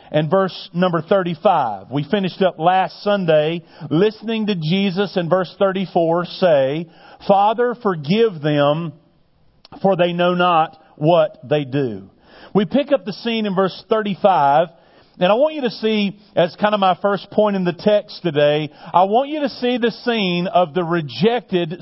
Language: English